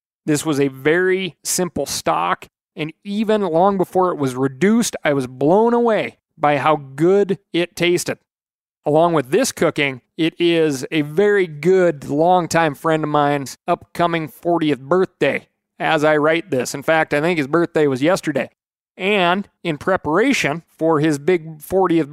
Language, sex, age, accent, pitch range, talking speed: English, male, 30-49, American, 145-175 Hz, 155 wpm